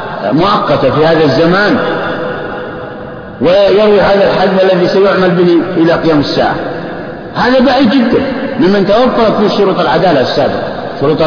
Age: 50-69